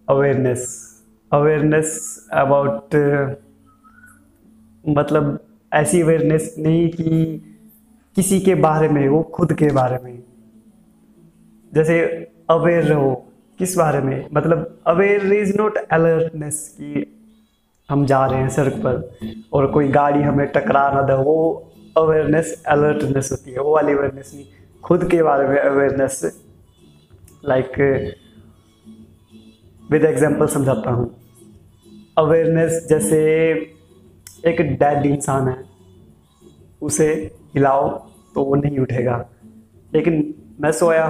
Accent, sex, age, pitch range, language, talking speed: native, male, 20-39, 120-155 Hz, Hindi, 110 wpm